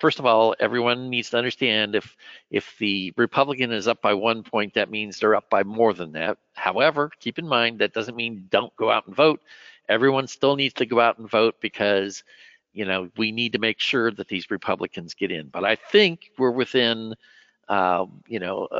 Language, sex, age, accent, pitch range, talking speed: English, male, 50-69, American, 100-120 Hz, 210 wpm